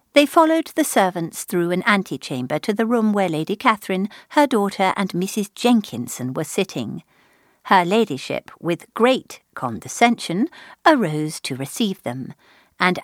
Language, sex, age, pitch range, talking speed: English, female, 50-69, 175-255 Hz, 140 wpm